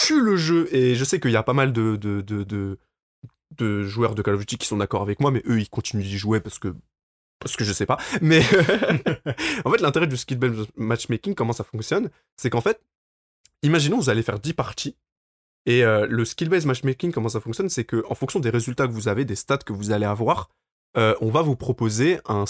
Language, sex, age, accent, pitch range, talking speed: French, male, 20-39, French, 105-145 Hz, 230 wpm